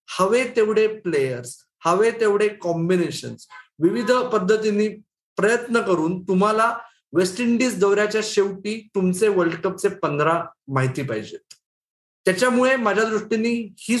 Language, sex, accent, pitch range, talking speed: Marathi, male, native, 170-210 Hz, 105 wpm